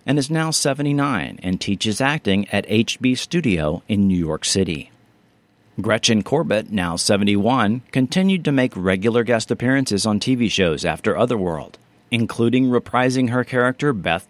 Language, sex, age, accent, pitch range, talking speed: English, male, 40-59, American, 100-135 Hz, 145 wpm